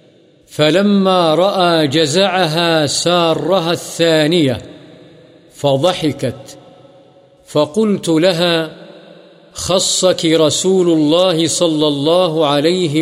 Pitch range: 155-180 Hz